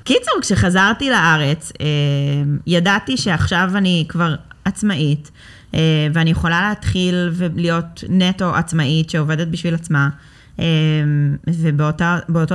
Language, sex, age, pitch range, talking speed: Hebrew, female, 20-39, 150-180 Hz, 85 wpm